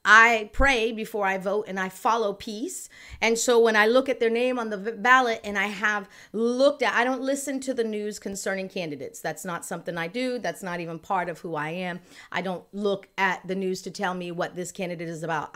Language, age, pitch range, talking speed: English, 40-59, 185-230 Hz, 230 wpm